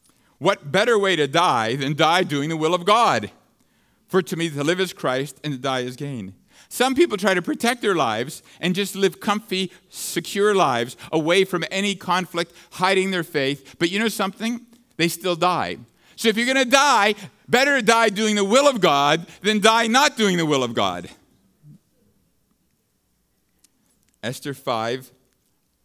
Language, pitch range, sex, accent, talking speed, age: English, 125-185 Hz, male, American, 170 wpm, 50-69